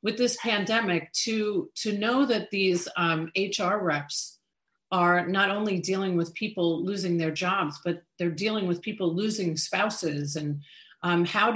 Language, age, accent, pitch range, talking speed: English, 40-59, American, 170-210 Hz, 150 wpm